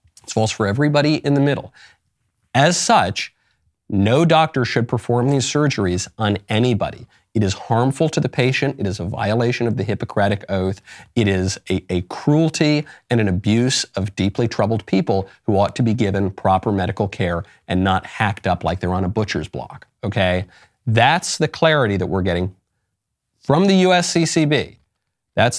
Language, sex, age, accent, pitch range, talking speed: English, male, 40-59, American, 95-130 Hz, 170 wpm